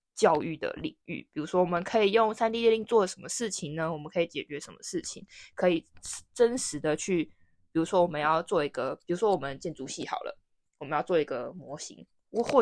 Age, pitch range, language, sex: 20-39, 160-220 Hz, Chinese, female